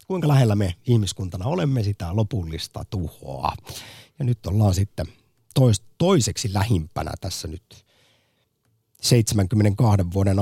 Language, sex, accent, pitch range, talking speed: Finnish, male, native, 90-120 Hz, 105 wpm